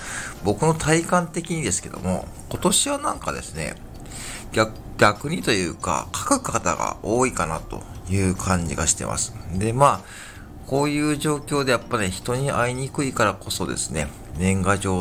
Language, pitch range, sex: Japanese, 85-125 Hz, male